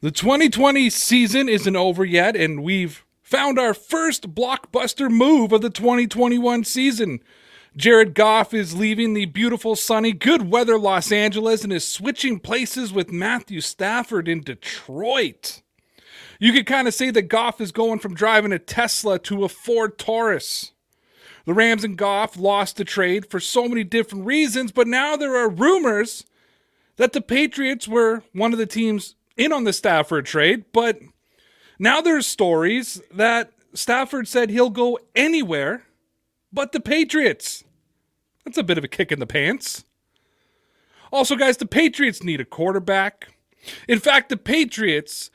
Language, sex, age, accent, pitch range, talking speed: English, male, 30-49, American, 200-255 Hz, 155 wpm